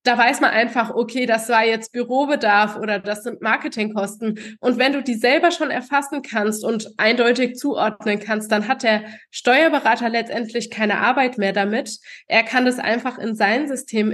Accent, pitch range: German, 225-265 Hz